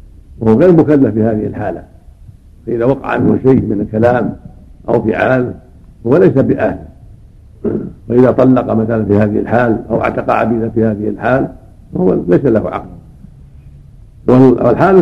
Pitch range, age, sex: 105-135 Hz, 60-79, male